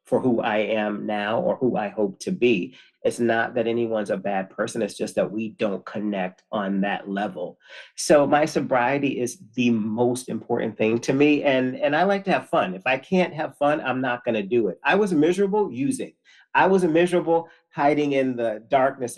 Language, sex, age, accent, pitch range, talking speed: English, male, 40-59, American, 115-140 Hz, 205 wpm